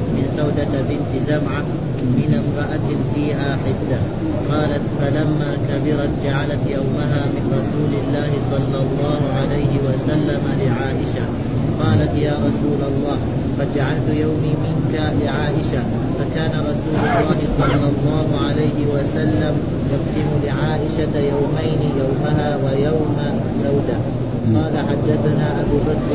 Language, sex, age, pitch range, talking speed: Arabic, male, 30-49, 140-150 Hz, 105 wpm